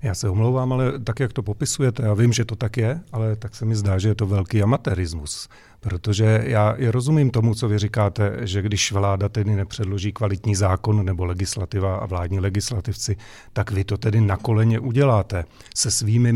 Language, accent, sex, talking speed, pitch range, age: Czech, native, male, 190 wpm, 100-115 Hz, 40-59